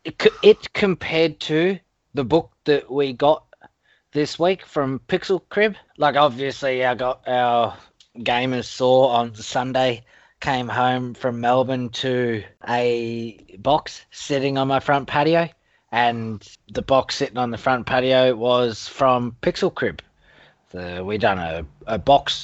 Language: English